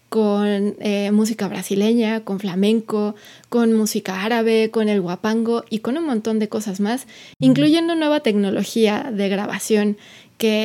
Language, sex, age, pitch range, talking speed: Spanish, female, 20-39, 205-235 Hz, 140 wpm